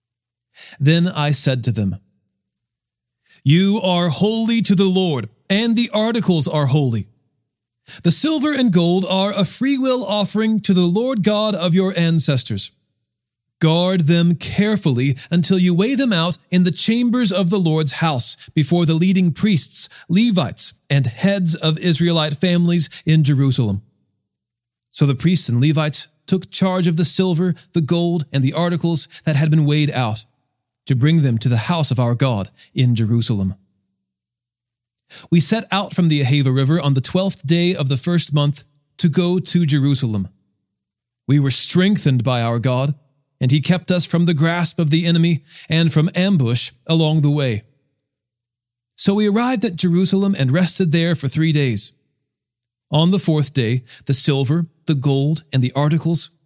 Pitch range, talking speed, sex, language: 130-180 Hz, 160 wpm, male, English